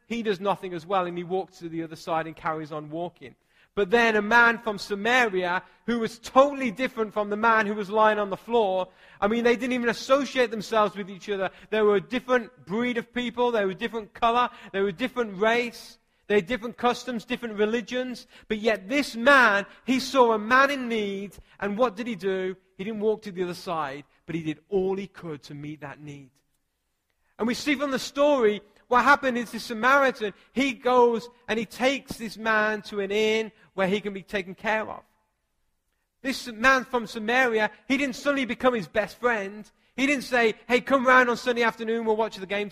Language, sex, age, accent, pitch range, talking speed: English, male, 30-49, British, 185-235 Hz, 215 wpm